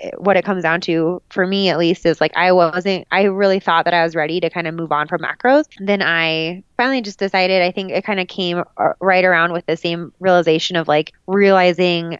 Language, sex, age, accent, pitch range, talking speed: English, female, 20-39, American, 165-195 Hz, 230 wpm